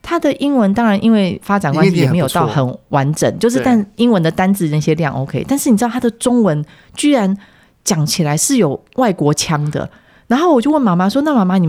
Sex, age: female, 30-49